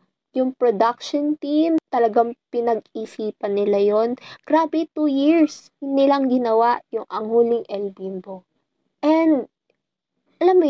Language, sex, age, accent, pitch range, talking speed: Filipino, female, 20-39, native, 205-285 Hz, 110 wpm